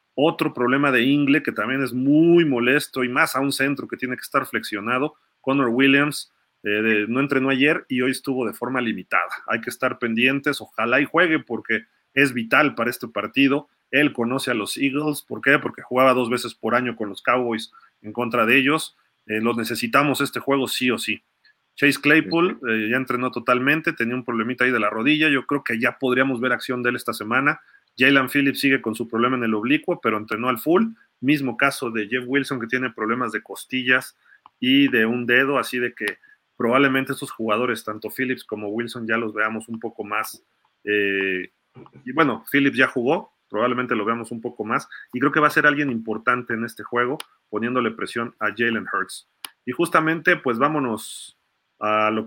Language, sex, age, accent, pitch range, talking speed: Spanish, male, 40-59, Mexican, 115-140 Hz, 200 wpm